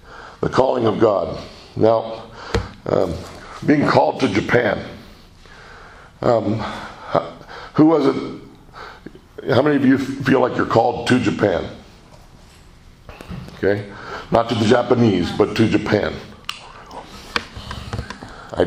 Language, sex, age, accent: Japanese, male, 60-79, American